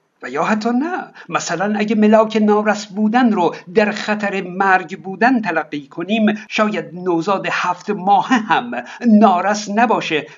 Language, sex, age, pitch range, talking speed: Persian, male, 60-79, 165-215 Hz, 135 wpm